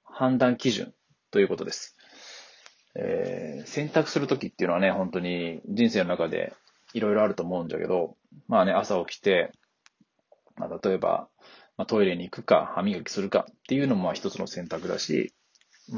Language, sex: Japanese, male